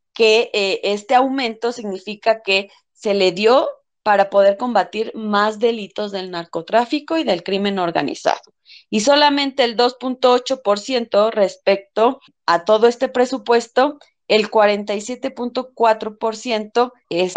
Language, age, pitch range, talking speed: Spanish, 20-39, 200-265 Hz, 110 wpm